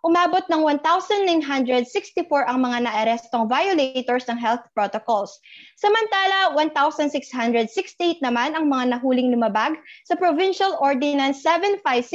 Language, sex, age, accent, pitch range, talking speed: Filipino, female, 20-39, native, 240-355 Hz, 100 wpm